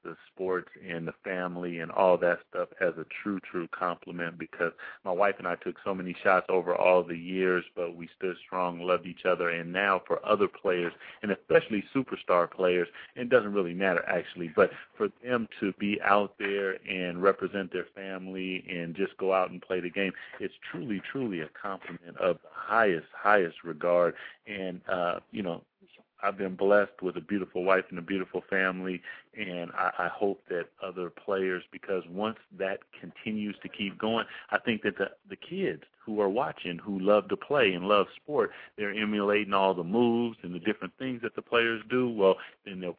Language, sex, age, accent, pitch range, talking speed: English, male, 40-59, American, 90-100 Hz, 195 wpm